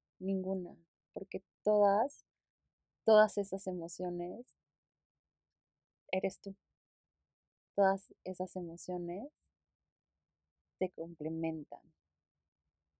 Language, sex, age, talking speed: Spanish, female, 20-39, 60 wpm